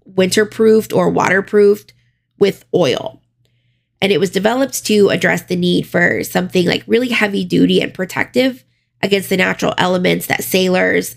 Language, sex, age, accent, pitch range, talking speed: English, female, 20-39, American, 120-200 Hz, 140 wpm